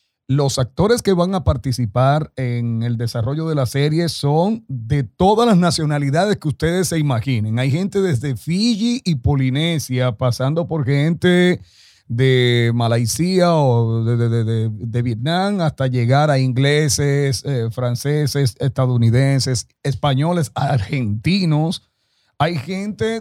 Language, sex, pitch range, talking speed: Spanish, male, 120-150 Hz, 130 wpm